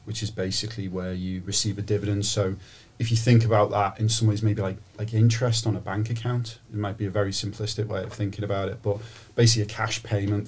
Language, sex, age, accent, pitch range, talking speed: English, male, 40-59, British, 100-115 Hz, 235 wpm